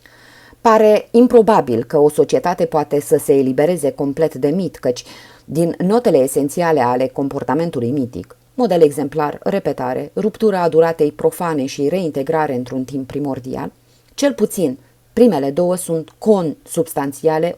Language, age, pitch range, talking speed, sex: Romanian, 30-49, 135-180 Hz, 125 wpm, female